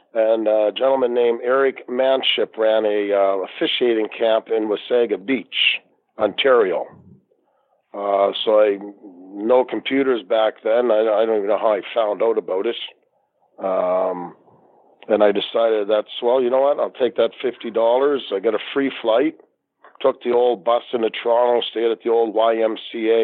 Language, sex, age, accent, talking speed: English, male, 50-69, American, 160 wpm